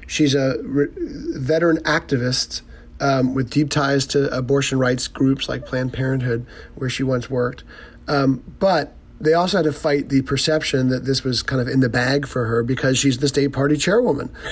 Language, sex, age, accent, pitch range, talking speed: English, male, 30-49, American, 130-150 Hz, 180 wpm